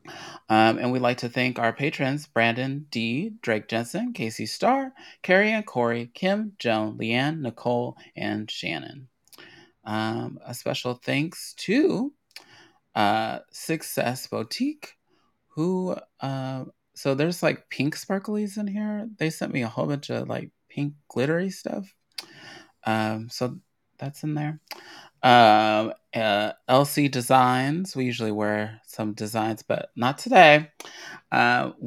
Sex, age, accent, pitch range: male, 30-49, American, 120-160 Hz